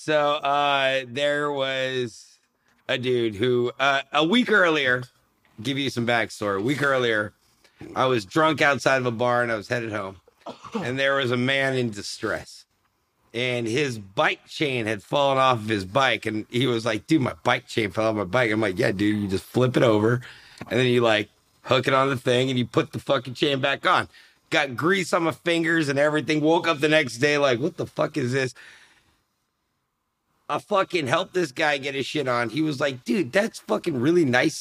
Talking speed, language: 210 wpm, English